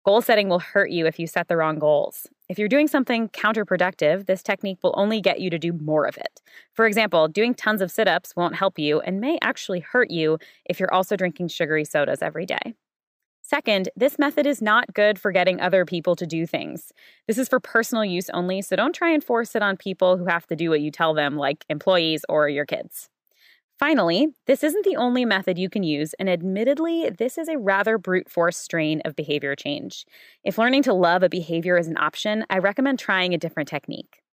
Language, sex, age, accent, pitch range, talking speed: English, female, 20-39, American, 165-215 Hz, 220 wpm